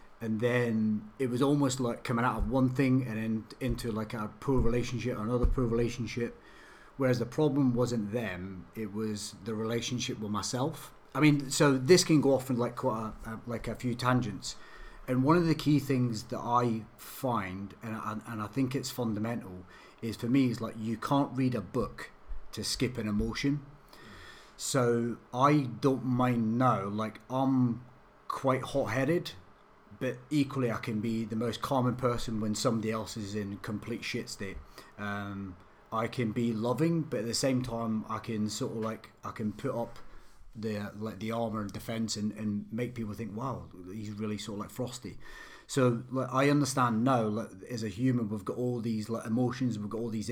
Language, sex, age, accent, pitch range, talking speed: English, male, 30-49, British, 110-130 Hz, 190 wpm